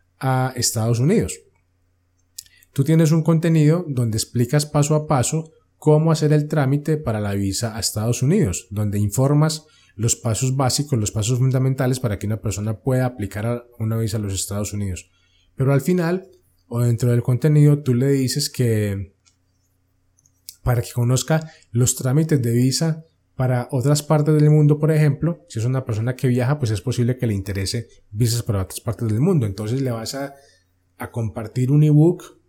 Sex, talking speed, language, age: male, 170 wpm, Spanish, 20-39